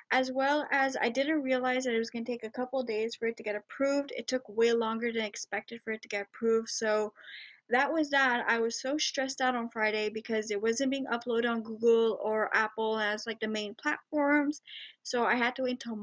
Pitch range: 215-255 Hz